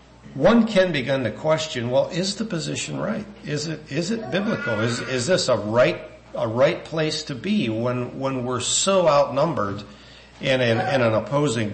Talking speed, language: 180 wpm, English